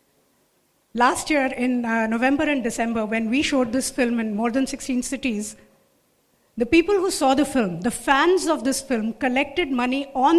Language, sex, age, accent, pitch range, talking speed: English, female, 50-69, Indian, 240-290 Hz, 180 wpm